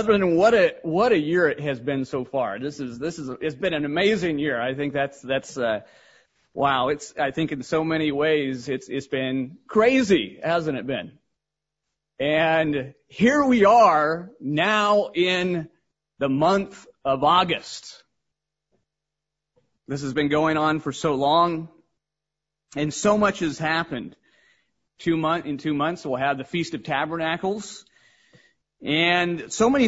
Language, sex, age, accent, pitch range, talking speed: English, male, 30-49, American, 145-180 Hz, 155 wpm